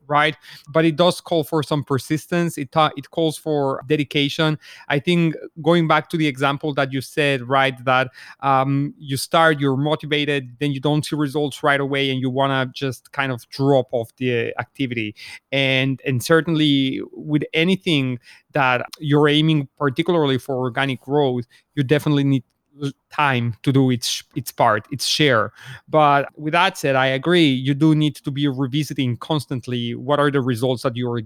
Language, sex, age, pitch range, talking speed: English, male, 30-49, 130-150 Hz, 175 wpm